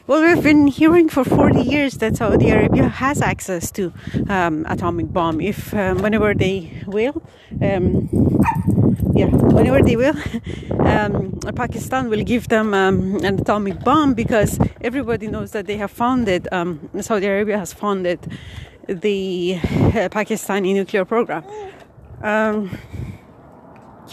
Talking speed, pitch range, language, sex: 130 wpm, 195-240 Hz, Persian, female